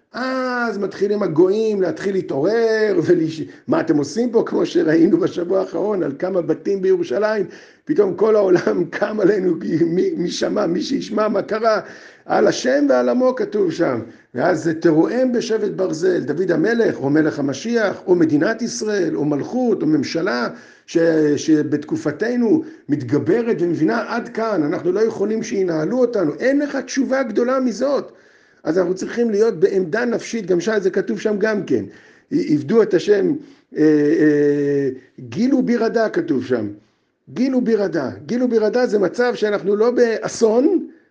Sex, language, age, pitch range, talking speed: male, Hebrew, 50-69, 175-295 Hz, 145 wpm